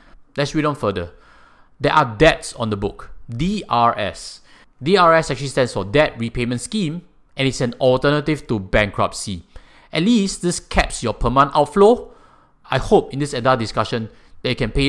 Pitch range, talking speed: 110-155 Hz, 165 wpm